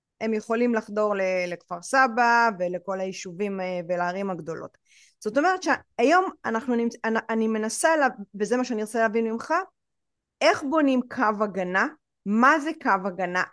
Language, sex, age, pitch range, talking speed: Hebrew, female, 30-49, 215-295 Hz, 130 wpm